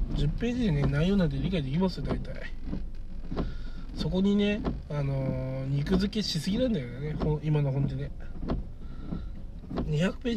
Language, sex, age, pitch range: Japanese, male, 20-39, 140-160 Hz